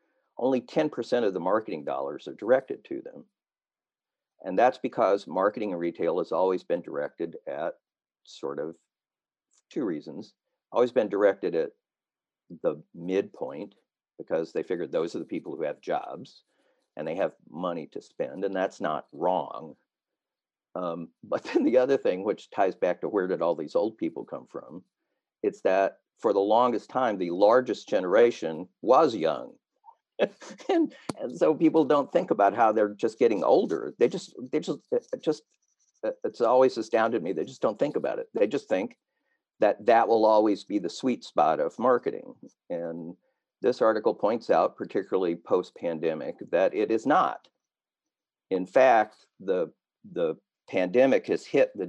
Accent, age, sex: American, 50-69, male